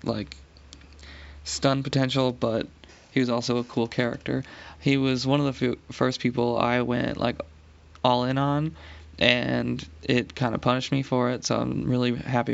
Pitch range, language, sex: 110-135 Hz, English, male